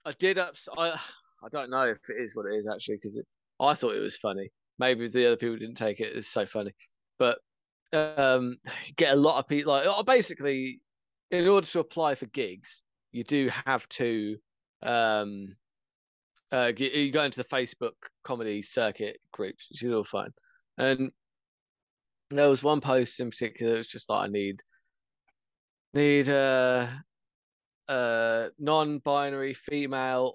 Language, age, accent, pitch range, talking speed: English, 20-39, British, 120-155 Hz, 160 wpm